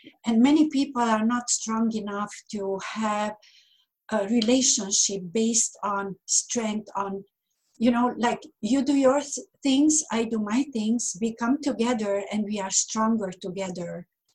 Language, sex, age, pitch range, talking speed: English, female, 60-79, 215-265 Hz, 140 wpm